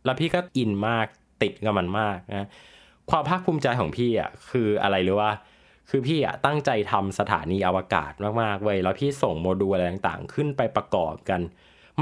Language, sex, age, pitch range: Thai, male, 20-39, 95-135 Hz